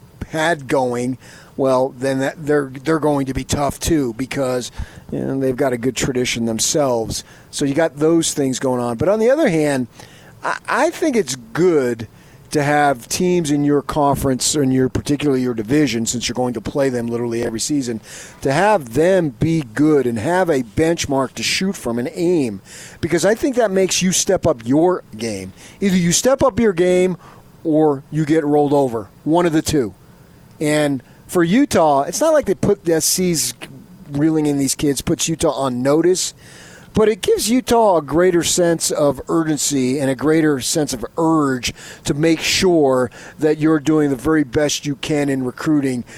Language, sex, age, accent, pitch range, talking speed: English, male, 40-59, American, 130-165 Hz, 185 wpm